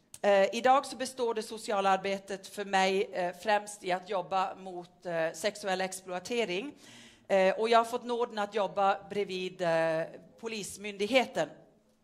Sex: female